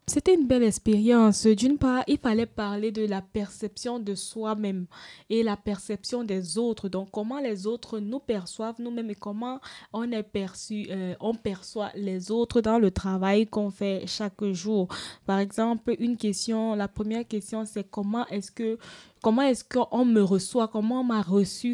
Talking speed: 175 wpm